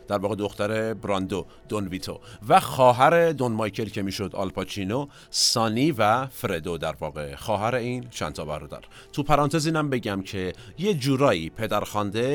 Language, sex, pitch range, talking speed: Persian, male, 100-135 Hz, 145 wpm